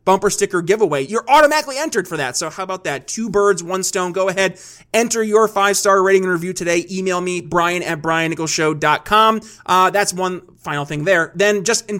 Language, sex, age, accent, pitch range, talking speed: English, male, 30-49, American, 175-215 Hz, 195 wpm